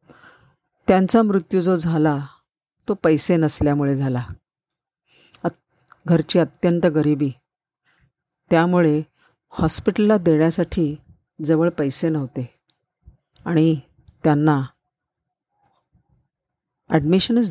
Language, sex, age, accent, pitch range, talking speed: Marathi, female, 50-69, native, 150-180 Hz, 70 wpm